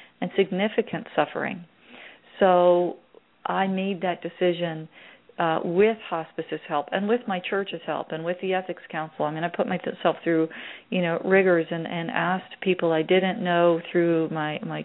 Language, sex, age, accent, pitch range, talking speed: English, female, 40-59, American, 160-185 Hz, 165 wpm